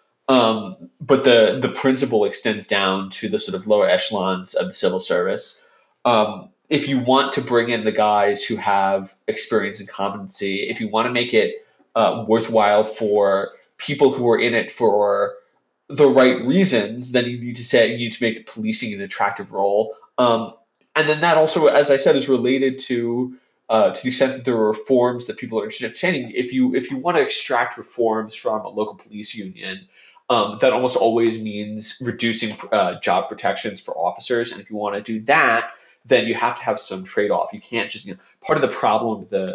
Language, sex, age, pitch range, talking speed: English, male, 20-39, 105-145 Hz, 205 wpm